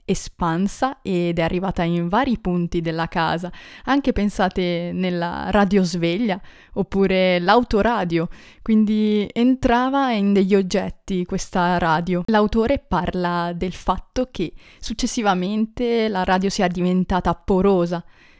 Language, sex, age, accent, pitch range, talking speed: Italian, female, 20-39, native, 180-225 Hz, 110 wpm